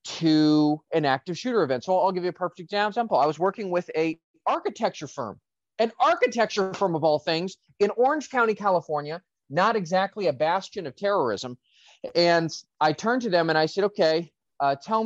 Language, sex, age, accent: English, male, 30-49, American